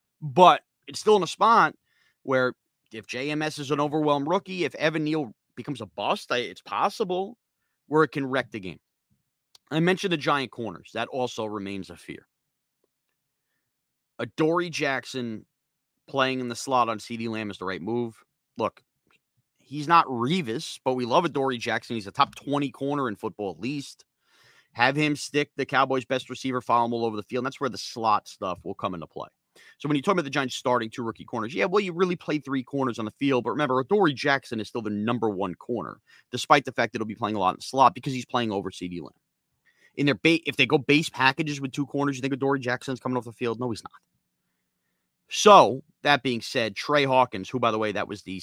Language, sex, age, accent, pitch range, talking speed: English, male, 30-49, American, 115-145 Hz, 215 wpm